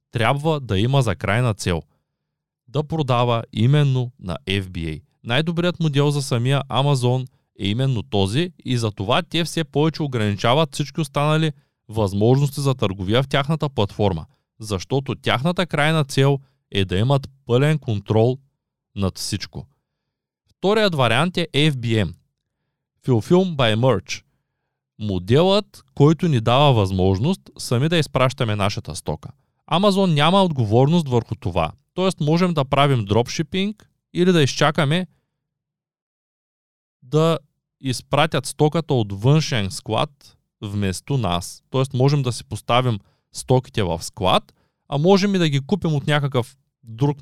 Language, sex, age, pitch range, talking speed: Bulgarian, male, 20-39, 110-155 Hz, 125 wpm